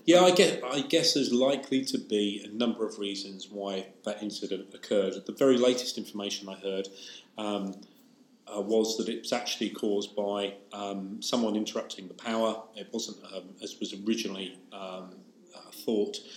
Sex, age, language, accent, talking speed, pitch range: male, 40-59, English, British, 160 wpm, 100-115 Hz